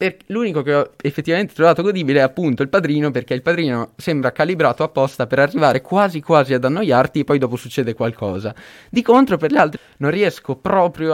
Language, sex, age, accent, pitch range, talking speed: Italian, male, 20-39, native, 120-150 Hz, 190 wpm